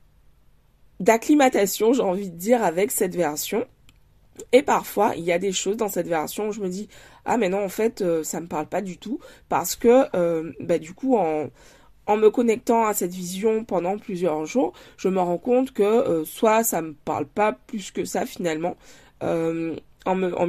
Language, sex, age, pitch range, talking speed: French, female, 20-39, 175-225 Hz, 200 wpm